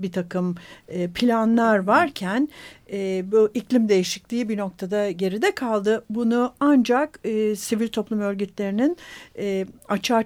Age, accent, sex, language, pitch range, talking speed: 60-79, native, female, Turkish, 195-250 Hz, 100 wpm